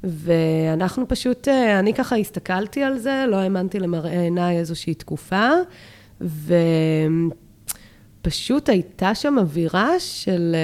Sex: female